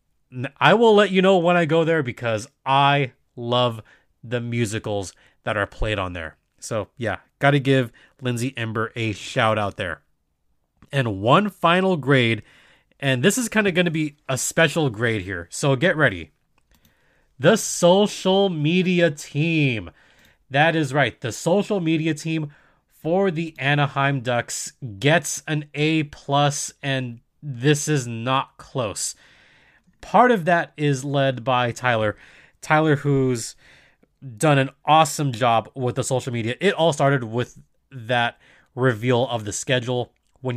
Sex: male